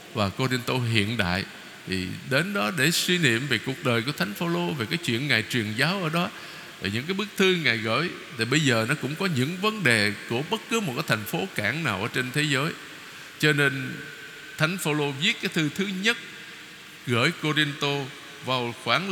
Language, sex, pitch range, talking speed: Vietnamese, male, 130-180 Hz, 205 wpm